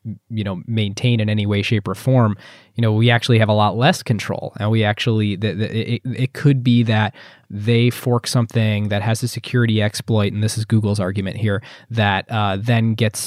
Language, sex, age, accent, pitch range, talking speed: English, male, 20-39, American, 110-145 Hz, 200 wpm